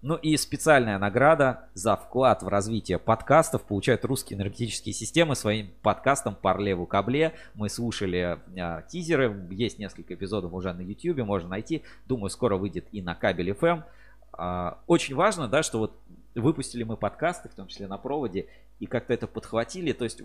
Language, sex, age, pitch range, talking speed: Russian, male, 20-39, 95-125 Hz, 170 wpm